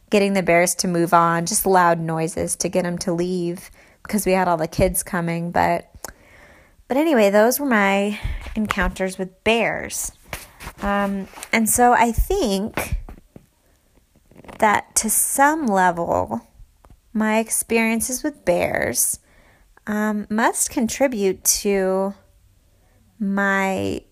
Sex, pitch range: female, 180-210 Hz